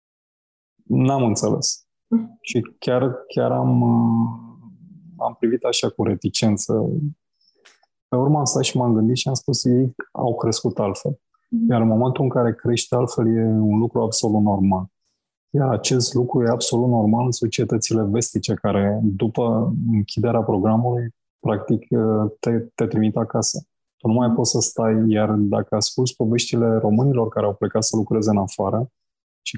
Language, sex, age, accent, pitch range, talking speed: Romanian, male, 20-39, native, 105-125 Hz, 150 wpm